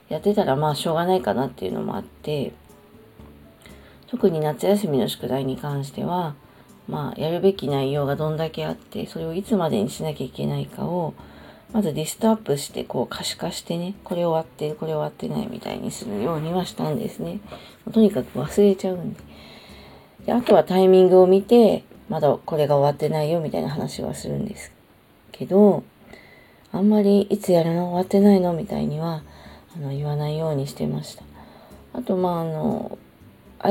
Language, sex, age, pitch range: Japanese, female, 40-59, 150-205 Hz